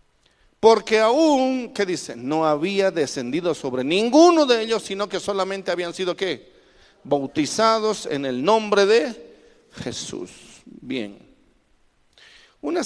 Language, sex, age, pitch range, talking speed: Spanish, male, 50-69, 150-205 Hz, 115 wpm